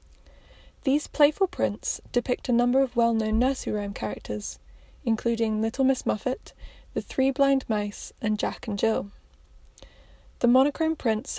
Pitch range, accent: 205-250 Hz, British